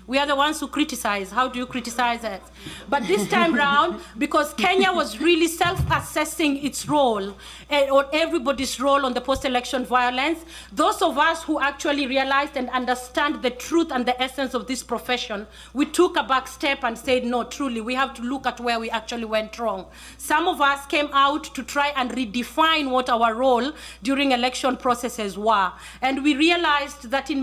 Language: English